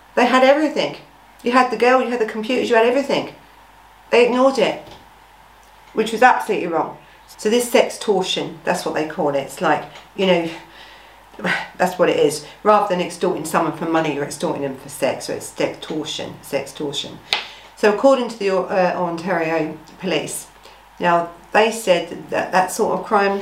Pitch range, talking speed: 180-265 Hz, 180 wpm